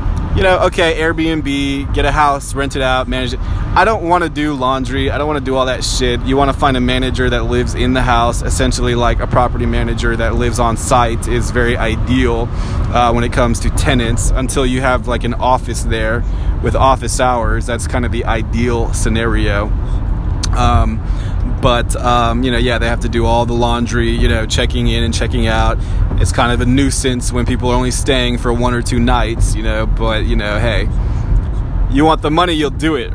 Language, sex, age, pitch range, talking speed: English, male, 20-39, 110-130 Hz, 215 wpm